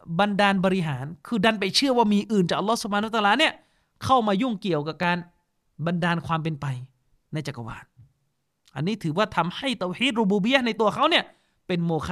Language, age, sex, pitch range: Thai, 20-39, male, 180-245 Hz